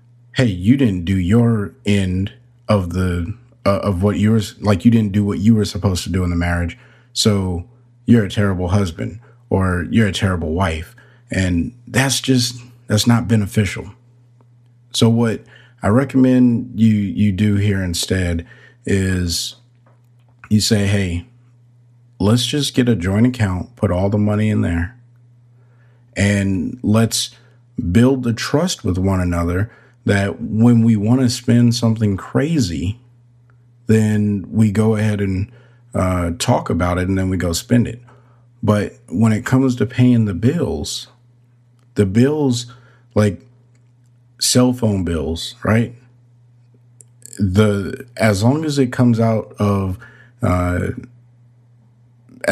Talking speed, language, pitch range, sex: 140 wpm, English, 100-120 Hz, male